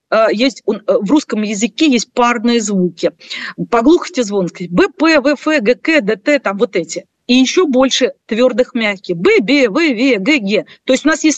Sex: female